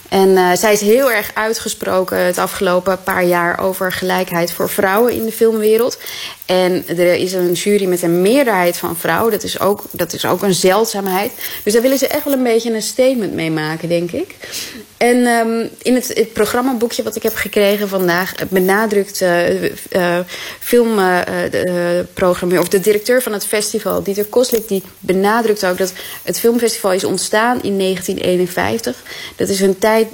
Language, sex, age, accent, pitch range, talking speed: Dutch, female, 20-39, Dutch, 180-220 Hz, 180 wpm